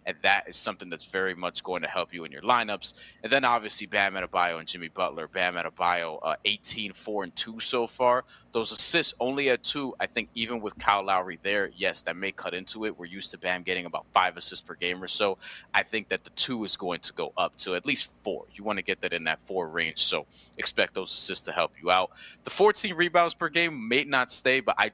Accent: American